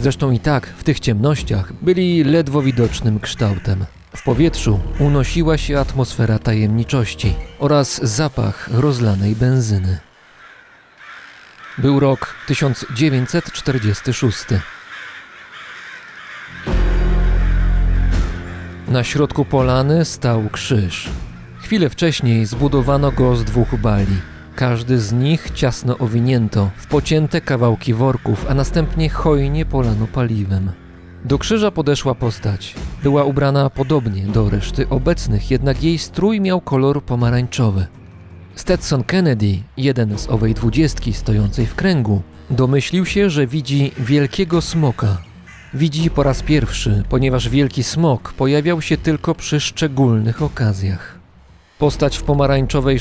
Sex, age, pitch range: male, 40-59, 105-145 Hz